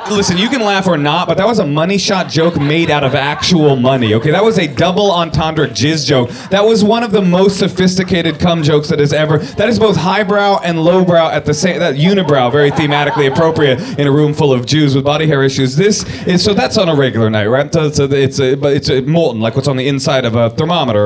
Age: 30-49